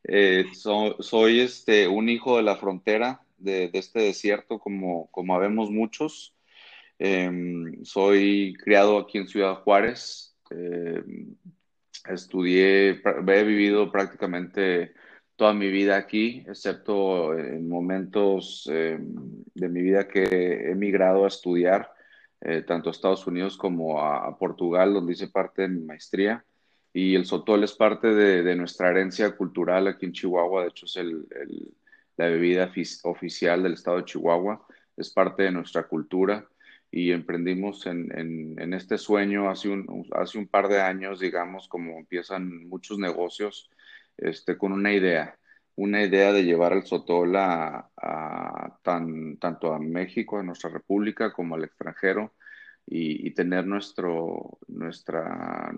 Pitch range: 90-100 Hz